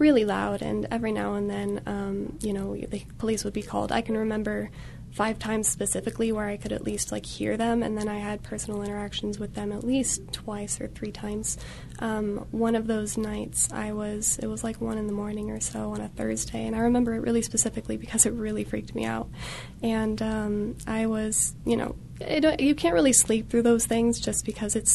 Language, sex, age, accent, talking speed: English, female, 20-39, American, 215 wpm